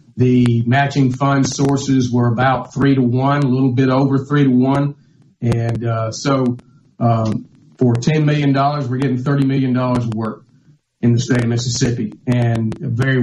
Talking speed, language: 160 wpm, English